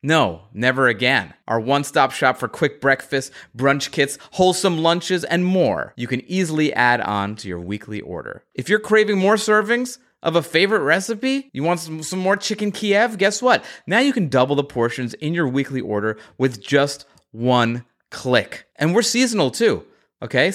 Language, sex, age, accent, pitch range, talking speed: English, male, 30-49, American, 120-170 Hz, 180 wpm